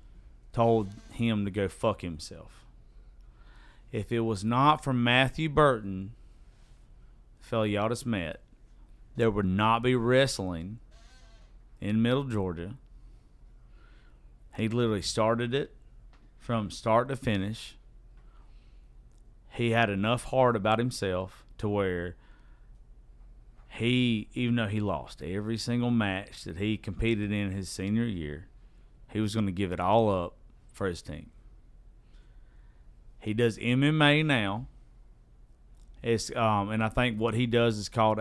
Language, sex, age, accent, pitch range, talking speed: English, male, 40-59, American, 95-115 Hz, 130 wpm